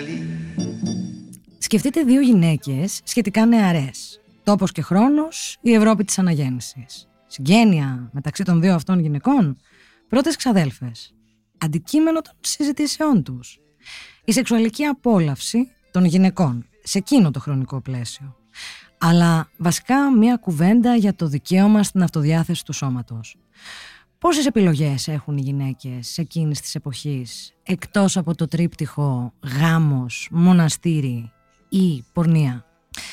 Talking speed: 110 wpm